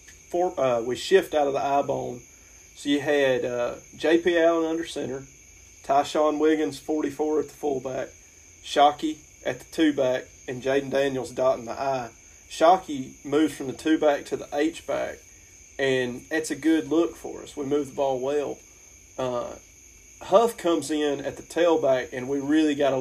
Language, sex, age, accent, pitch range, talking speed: English, male, 30-49, American, 120-150 Hz, 170 wpm